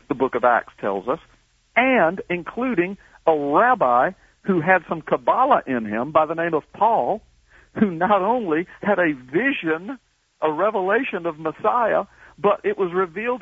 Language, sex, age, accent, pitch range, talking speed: English, male, 60-79, American, 130-185 Hz, 155 wpm